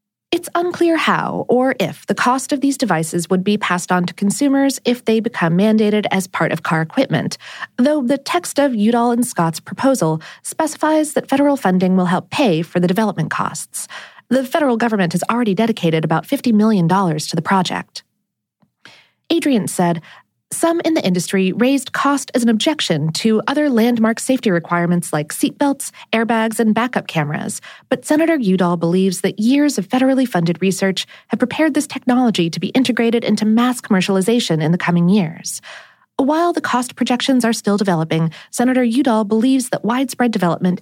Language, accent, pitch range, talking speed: English, American, 185-265 Hz, 170 wpm